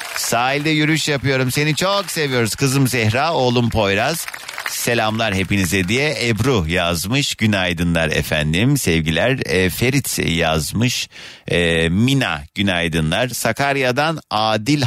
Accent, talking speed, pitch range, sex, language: native, 105 wpm, 100-140 Hz, male, Turkish